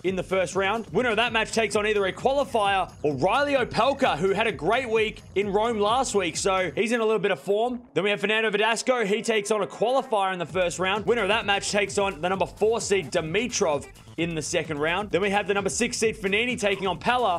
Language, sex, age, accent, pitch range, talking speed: English, male, 20-39, Australian, 190-230 Hz, 250 wpm